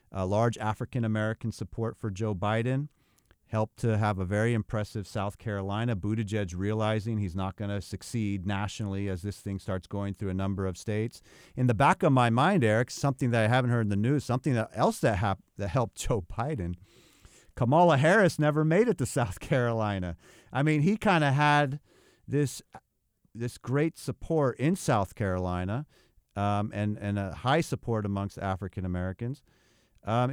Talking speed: 170 wpm